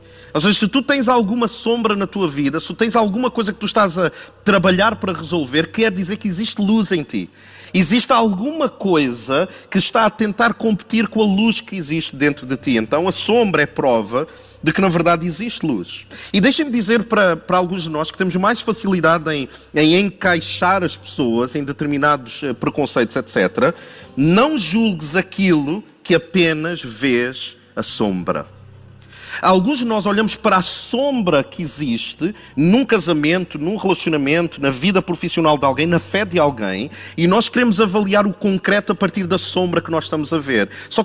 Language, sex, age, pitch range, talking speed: Portuguese, male, 40-59, 155-215 Hz, 180 wpm